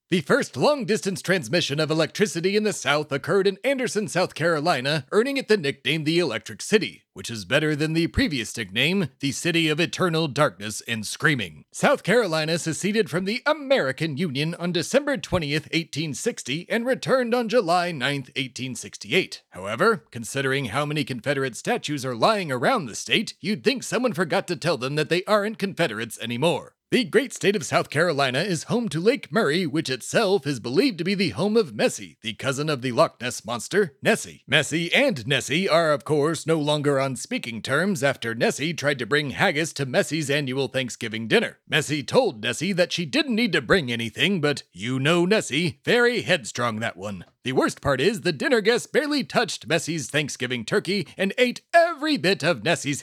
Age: 30-49